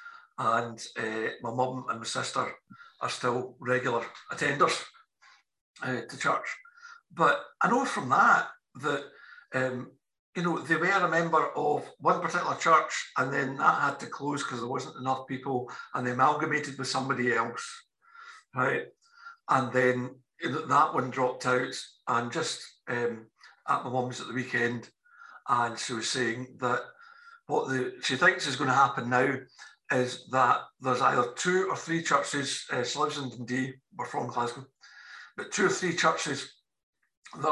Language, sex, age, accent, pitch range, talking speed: English, male, 60-79, British, 125-180 Hz, 155 wpm